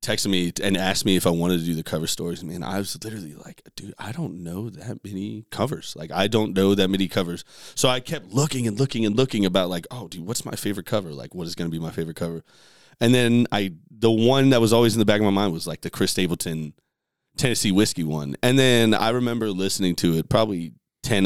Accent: American